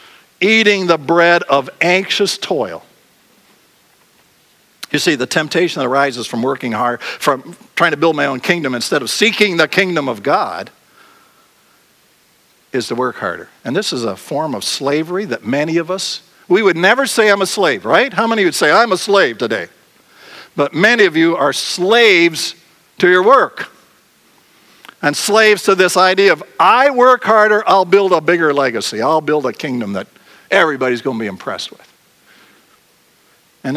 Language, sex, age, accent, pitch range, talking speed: English, male, 60-79, American, 165-225 Hz, 170 wpm